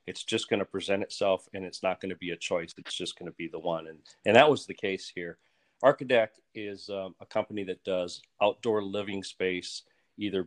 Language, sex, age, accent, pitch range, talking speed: English, male, 40-59, American, 90-105 Hz, 225 wpm